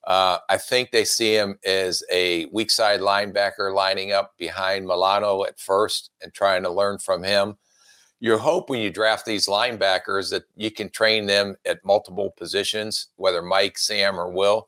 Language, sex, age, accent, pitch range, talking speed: English, male, 50-69, American, 95-105 Hz, 175 wpm